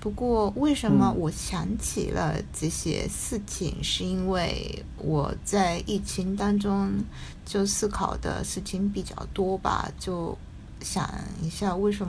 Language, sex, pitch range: Chinese, female, 170-225 Hz